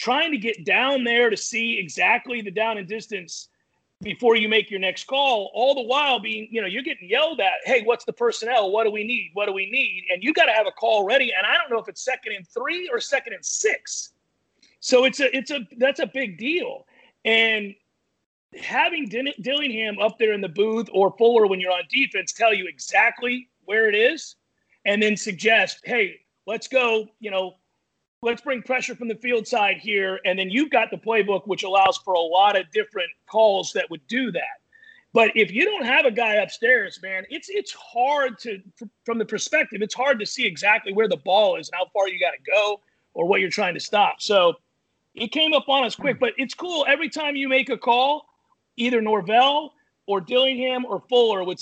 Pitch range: 205-270 Hz